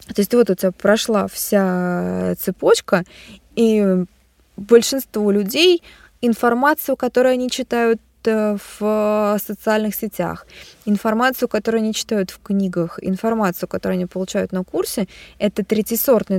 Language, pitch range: Russian, 190-225 Hz